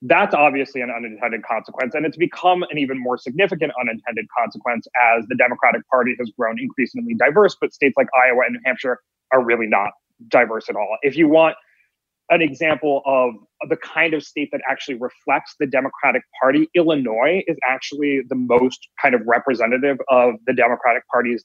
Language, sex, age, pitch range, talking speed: English, male, 30-49, 125-160 Hz, 175 wpm